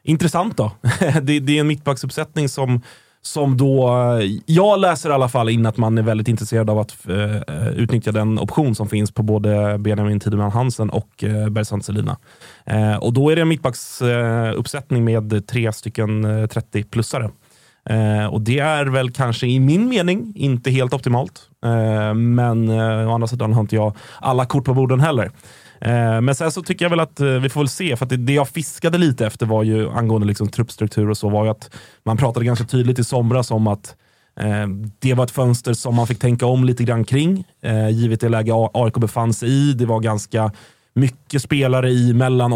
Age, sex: 30-49, male